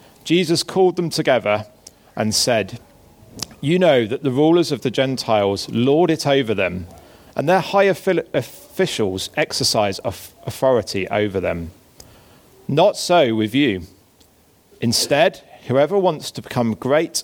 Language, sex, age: English, male, 40-59